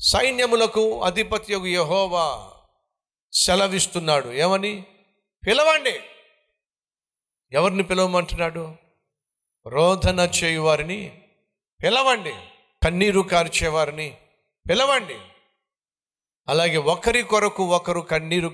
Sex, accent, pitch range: male, native, 155-210 Hz